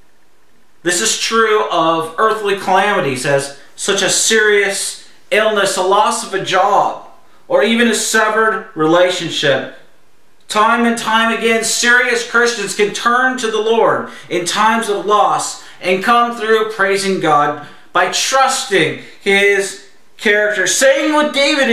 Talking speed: 135 wpm